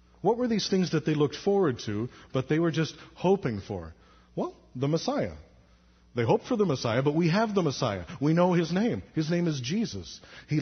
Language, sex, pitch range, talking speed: English, male, 110-175 Hz, 210 wpm